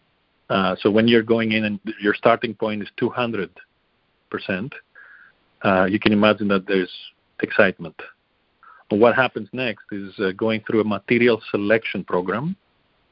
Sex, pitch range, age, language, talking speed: male, 100-115 Hz, 40-59, English, 135 wpm